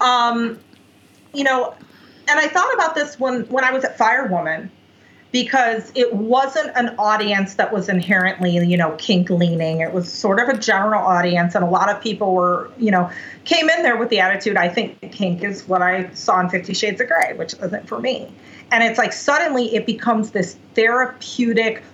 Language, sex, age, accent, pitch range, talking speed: English, female, 40-59, American, 195-255 Hz, 195 wpm